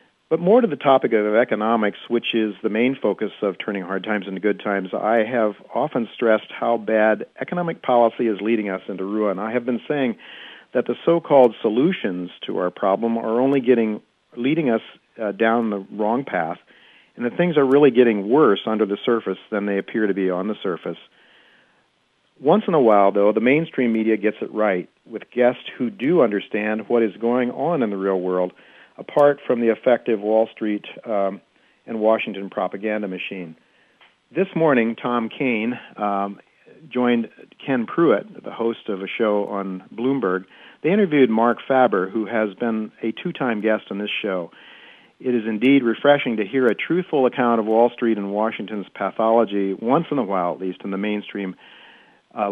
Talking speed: 180 wpm